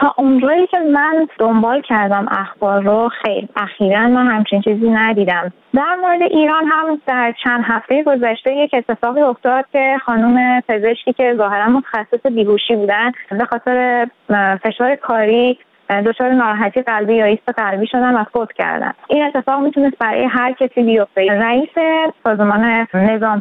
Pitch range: 215-265 Hz